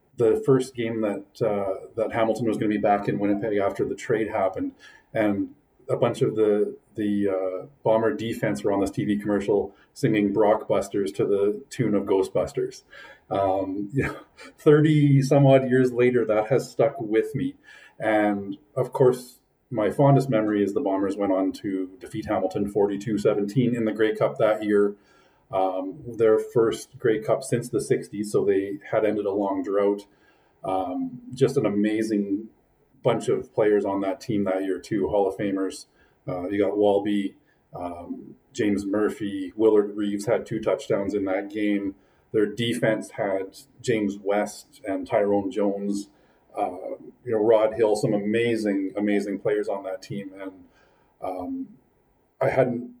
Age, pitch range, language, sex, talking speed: 30-49, 100-130 Hz, English, male, 160 wpm